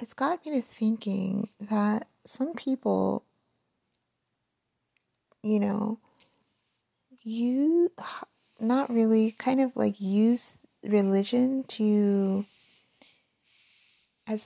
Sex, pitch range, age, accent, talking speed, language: female, 190-225 Hz, 30-49, American, 85 wpm, English